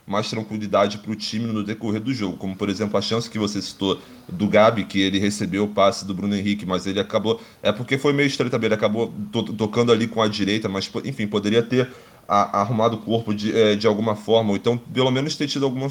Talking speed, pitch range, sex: 230 wpm, 105-120 Hz, male